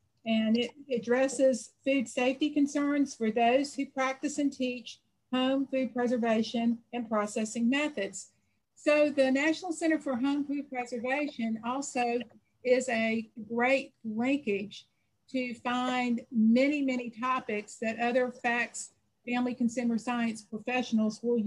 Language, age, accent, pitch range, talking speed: English, 50-69, American, 225-265 Hz, 125 wpm